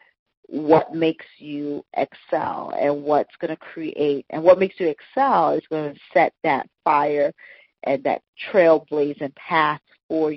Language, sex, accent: English, female, American